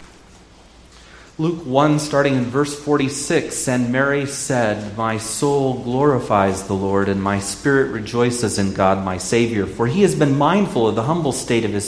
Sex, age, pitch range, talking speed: male, 30-49, 95-135 Hz, 165 wpm